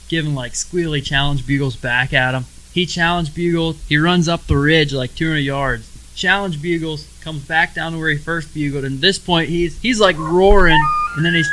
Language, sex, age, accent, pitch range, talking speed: English, male, 20-39, American, 130-165 Hz, 210 wpm